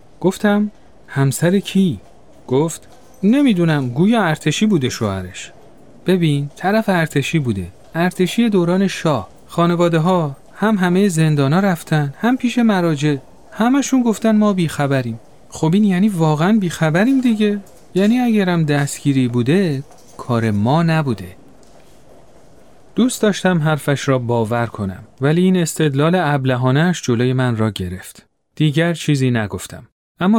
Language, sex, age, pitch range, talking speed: Persian, male, 30-49, 130-185 Hz, 120 wpm